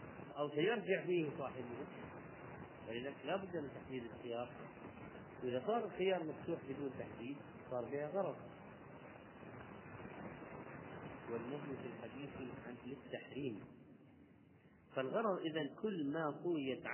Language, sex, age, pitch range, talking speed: Arabic, male, 40-59, 120-155 Hz, 105 wpm